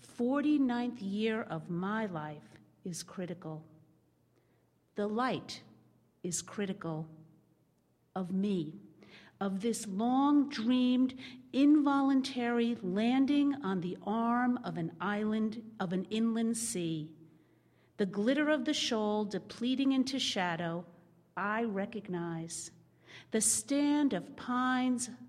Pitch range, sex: 170-240 Hz, female